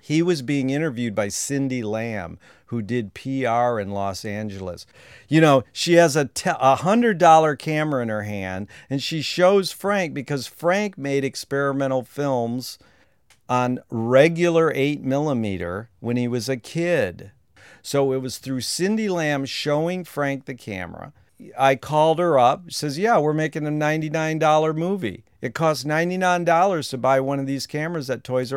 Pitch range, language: 115-155 Hz, English